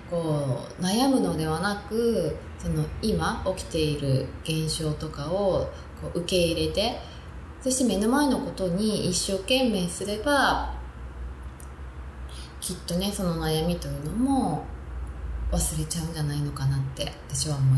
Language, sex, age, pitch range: Japanese, female, 20-39, 140-185 Hz